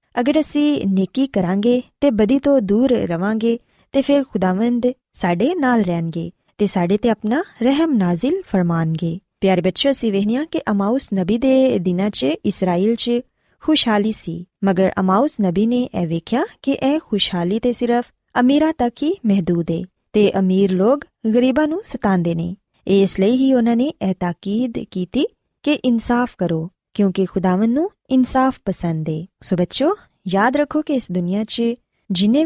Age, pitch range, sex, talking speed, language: 20-39, 185-260 Hz, female, 100 wpm, Punjabi